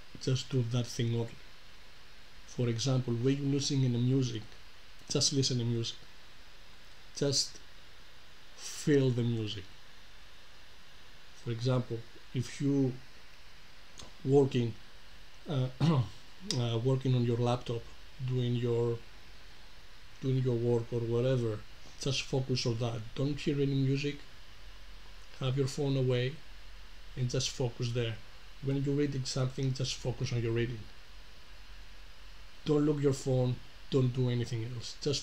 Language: English